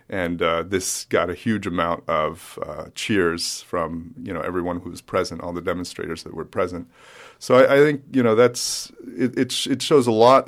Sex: male